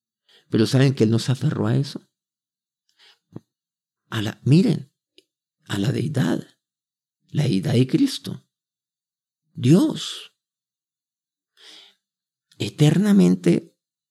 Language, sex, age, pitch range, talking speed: Spanish, male, 50-69, 115-160 Hz, 80 wpm